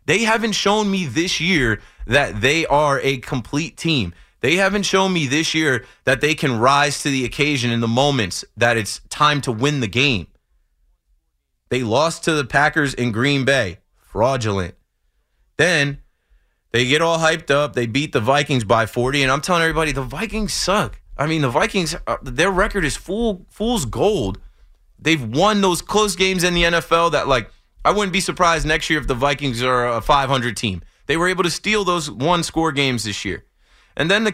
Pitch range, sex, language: 115-160 Hz, male, English